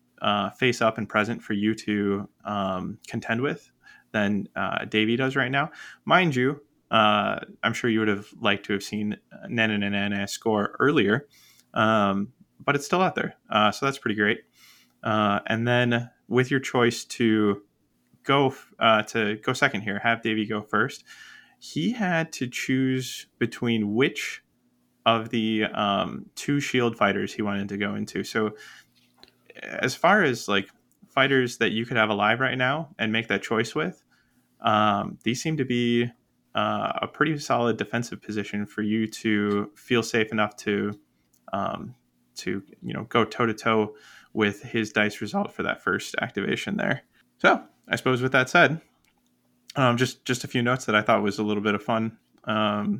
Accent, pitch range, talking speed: American, 105-125 Hz, 175 wpm